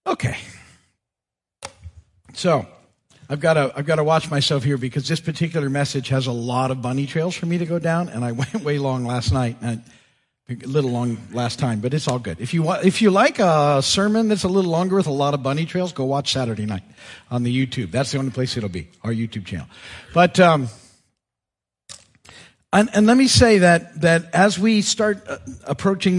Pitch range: 130-175 Hz